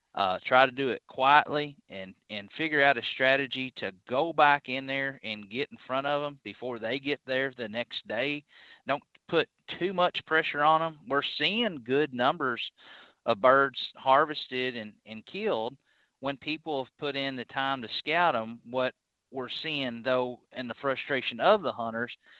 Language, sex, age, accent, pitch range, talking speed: English, male, 30-49, American, 115-145 Hz, 180 wpm